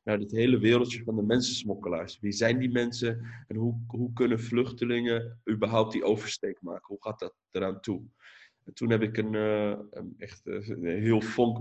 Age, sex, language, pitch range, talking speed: 20-39, male, Dutch, 100-115 Hz, 185 wpm